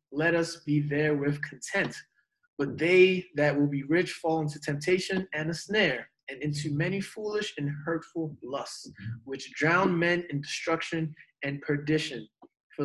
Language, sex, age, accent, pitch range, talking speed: English, male, 20-39, American, 150-195 Hz, 155 wpm